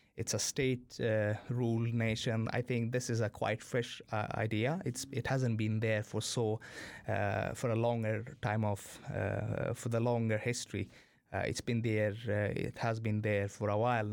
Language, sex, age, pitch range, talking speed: English, male, 20-39, 105-125 Hz, 190 wpm